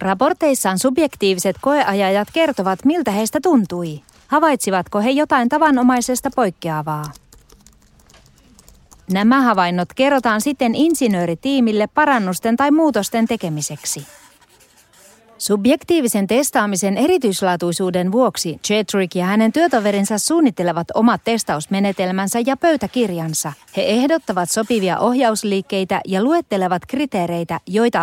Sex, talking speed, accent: female, 90 wpm, native